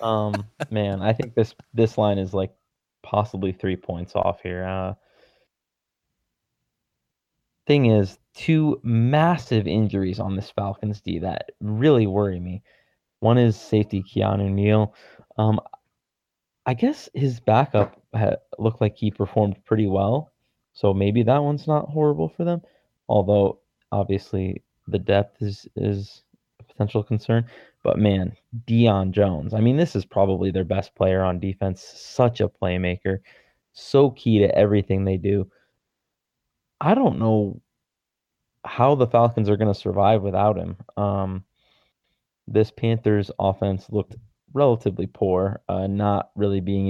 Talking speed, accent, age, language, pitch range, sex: 135 wpm, American, 20-39, English, 95-115 Hz, male